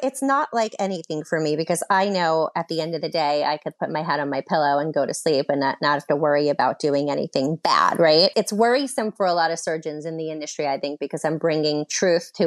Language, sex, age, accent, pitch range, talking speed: English, female, 30-49, American, 150-180 Hz, 265 wpm